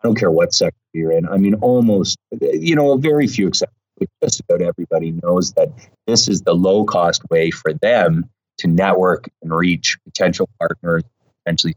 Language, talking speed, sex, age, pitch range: English, 180 wpm, male, 30-49, 85-130 Hz